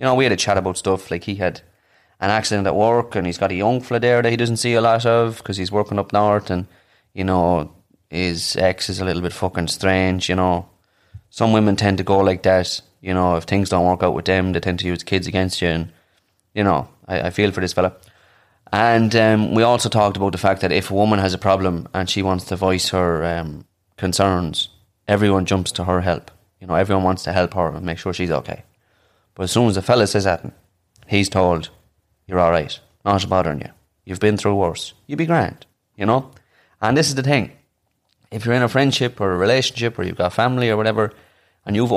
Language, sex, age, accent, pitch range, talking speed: English, male, 20-39, Irish, 90-110 Hz, 235 wpm